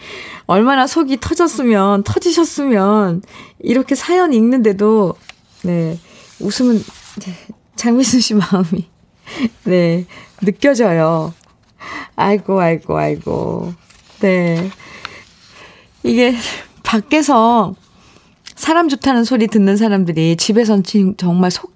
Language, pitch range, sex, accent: Korean, 185-260 Hz, female, native